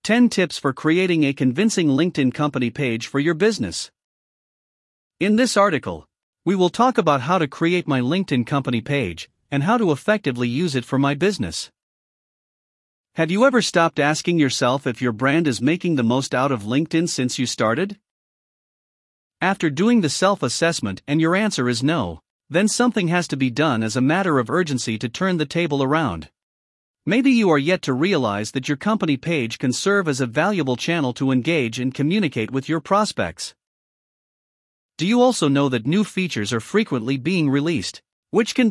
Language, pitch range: English, 125-185 Hz